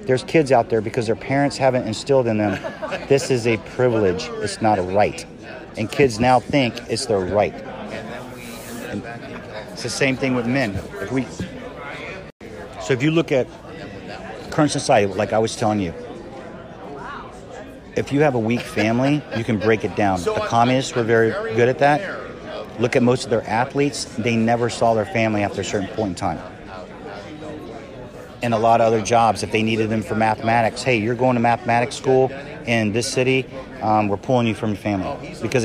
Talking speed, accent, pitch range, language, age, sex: 180 wpm, American, 110-130 Hz, English, 40-59, male